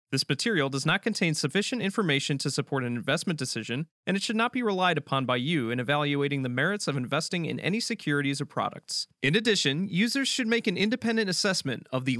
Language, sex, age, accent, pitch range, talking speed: English, male, 30-49, American, 140-205 Hz, 205 wpm